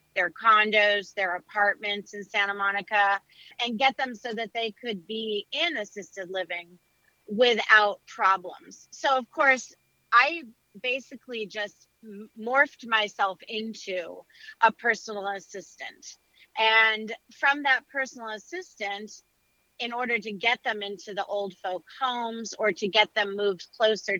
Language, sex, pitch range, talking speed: English, female, 200-250 Hz, 130 wpm